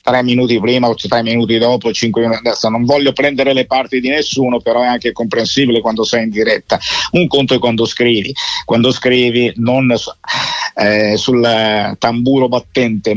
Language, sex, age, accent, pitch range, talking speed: Italian, male, 50-69, native, 110-135 Hz, 170 wpm